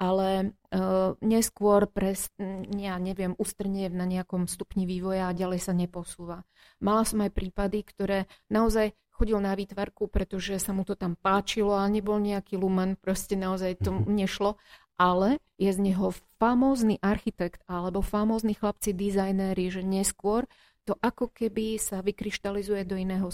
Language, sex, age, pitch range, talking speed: Slovak, female, 40-59, 185-205 Hz, 150 wpm